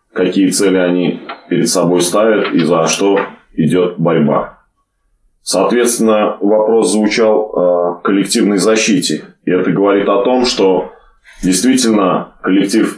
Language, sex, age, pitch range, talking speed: Russian, male, 20-39, 90-110 Hz, 115 wpm